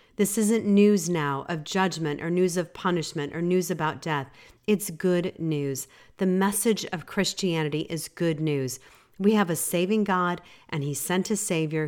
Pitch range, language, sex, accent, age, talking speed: 145-185 Hz, English, female, American, 40-59, 170 wpm